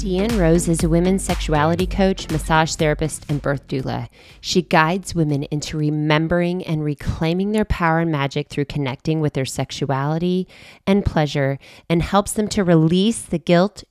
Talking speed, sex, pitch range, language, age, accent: 160 wpm, female, 145-170 Hz, English, 20-39, American